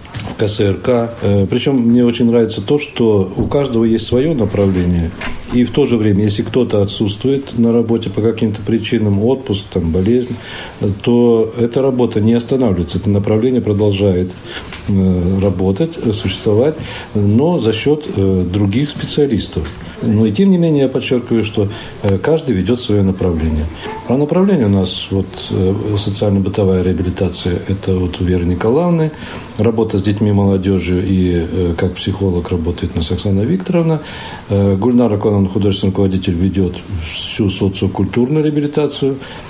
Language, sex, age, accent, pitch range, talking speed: Russian, male, 40-59, native, 95-120 Hz, 130 wpm